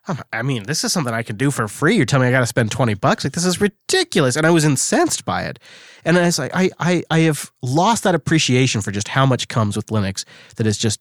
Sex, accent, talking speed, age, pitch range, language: male, American, 275 wpm, 30-49, 115-155 Hz, English